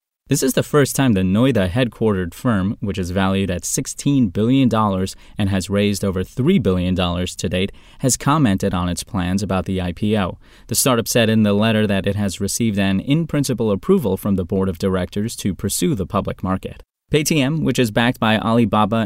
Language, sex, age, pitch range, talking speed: English, male, 20-39, 95-125 Hz, 190 wpm